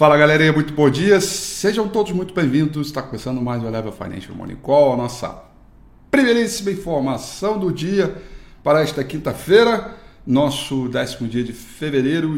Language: Portuguese